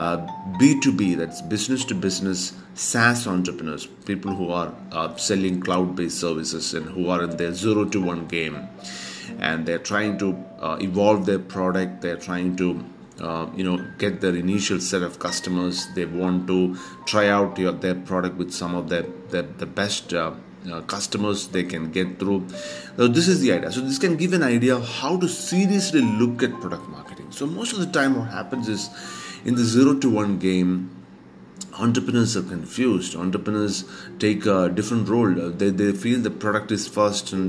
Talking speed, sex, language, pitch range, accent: 185 wpm, male, English, 90-115 Hz, Indian